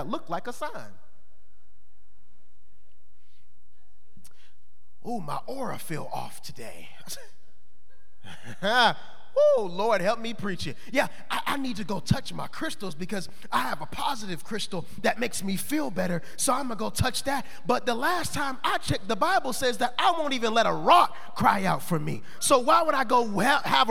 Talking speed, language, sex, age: 175 wpm, English, male, 30-49